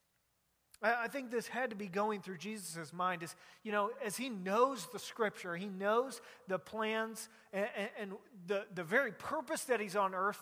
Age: 30-49